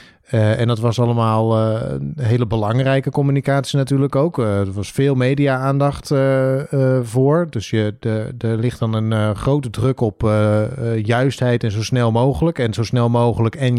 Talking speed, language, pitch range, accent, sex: 190 wpm, Dutch, 115-145 Hz, Dutch, male